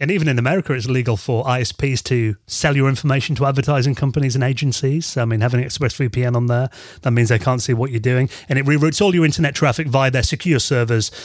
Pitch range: 120-155 Hz